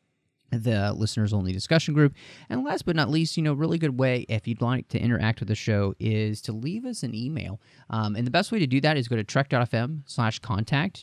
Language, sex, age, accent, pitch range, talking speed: English, male, 30-49, American, 110-140 Hz, 235 wpm